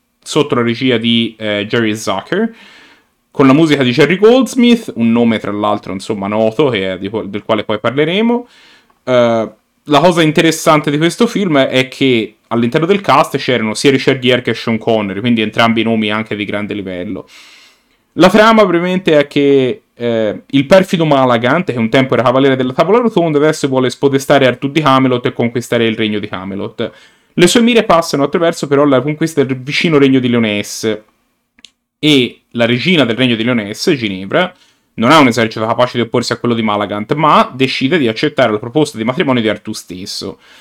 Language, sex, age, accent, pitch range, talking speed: Italian, male, 30-49, native, 115-155 Hz, 185 wpm